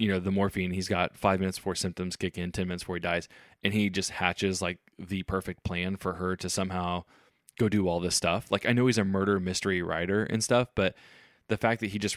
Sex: male